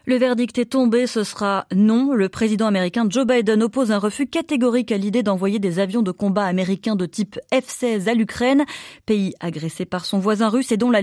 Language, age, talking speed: French, 30-49, 205 wpm